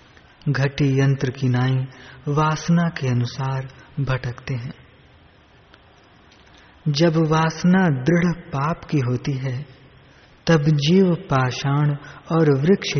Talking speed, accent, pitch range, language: 95 wpm, native, 130-155 Hz, Hindi